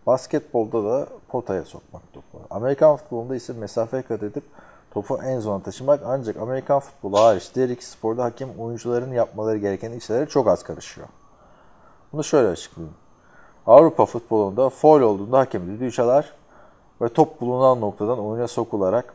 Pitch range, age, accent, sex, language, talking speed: 105-130 Hz, 30-49, native, male, Turkish, 145 wpm